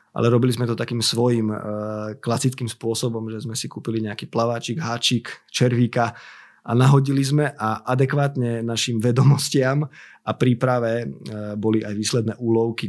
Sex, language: male, Slovak